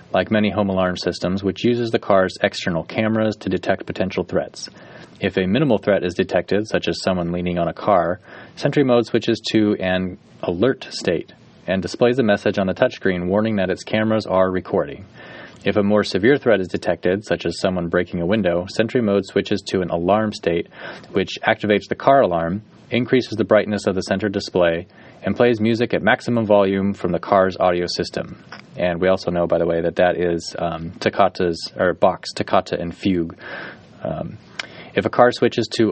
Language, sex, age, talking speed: English, male, 30-49, 190 wpm